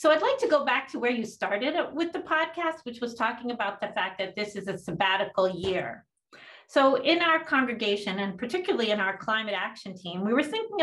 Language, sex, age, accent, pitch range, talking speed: English, female, 30-49, American, 195-255 Hz, 215 wpm